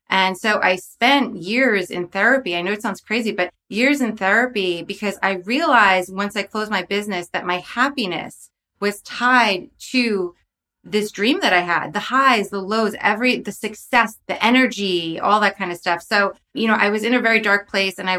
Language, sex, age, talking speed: English, female, 20-39, 200 wpm